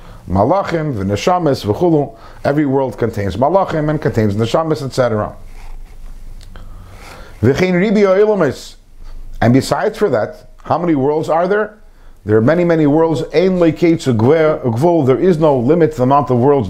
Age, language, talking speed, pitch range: 50-69, English, 135 wpm, 115-165 Hz